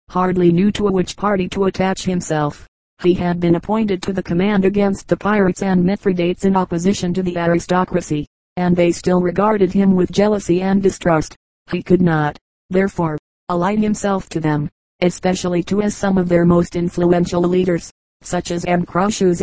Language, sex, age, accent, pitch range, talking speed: English, female, 40-59, American, 175-195 Hz, 165 wpm